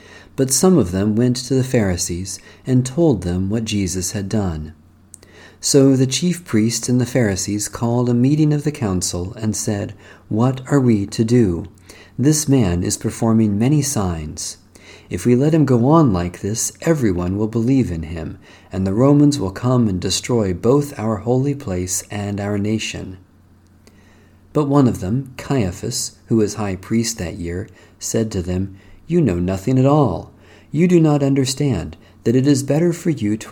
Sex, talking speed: male, 175 wpm